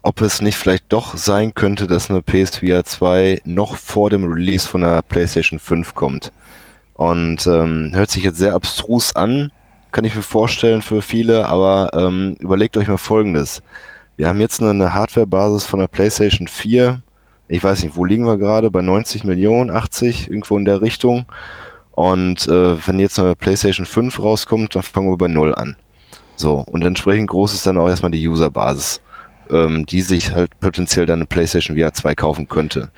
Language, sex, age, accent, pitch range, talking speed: German, male, 20-39, German, 85-105 Hz, 180 wpm